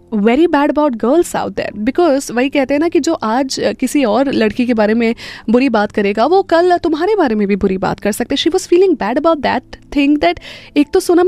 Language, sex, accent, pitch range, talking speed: Hindi, female, native, 240-320 Hz, 235 wpm